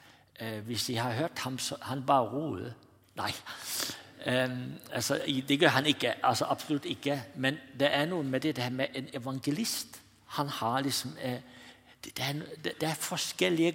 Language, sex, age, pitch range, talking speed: Danish, male, 60-79, 110-145 Hz, 150 wpm